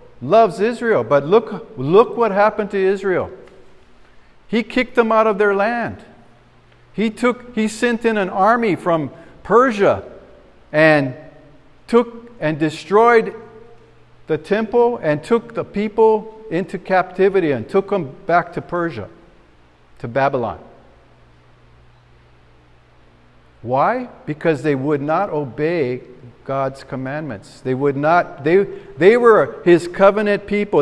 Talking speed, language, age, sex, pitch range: 120 wpm, English, 50-69, male, 145-210 Hz